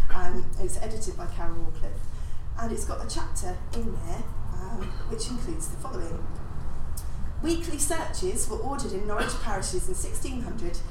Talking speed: 150 wpm